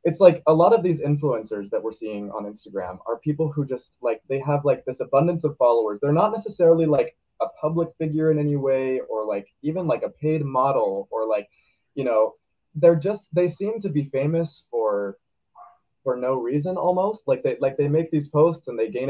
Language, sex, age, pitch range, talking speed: English, male, 20-39, 125-205 Hz, 210 wpm